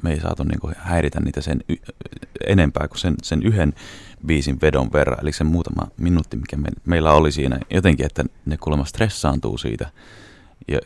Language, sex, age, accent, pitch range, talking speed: Finnish, male, 30-49, native, 75-95 Hz, 165 wpm